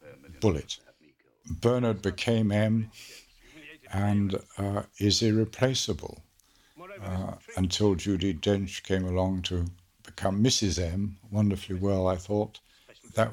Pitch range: 95-115 Hz